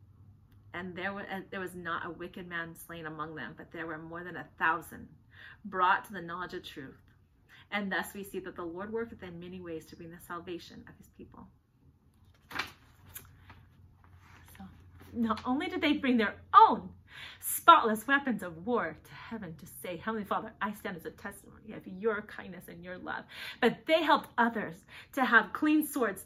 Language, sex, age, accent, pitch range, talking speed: English, female, 30-49, American, 175-230 Hz, 180 wpm